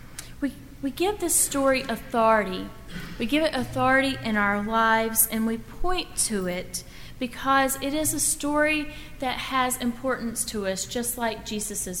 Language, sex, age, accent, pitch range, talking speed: English, female, 30-49, American, 215-270 Hz, 150 wpm